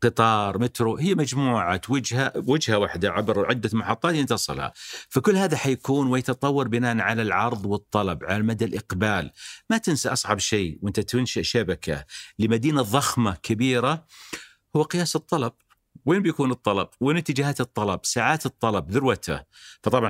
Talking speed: 135 wpm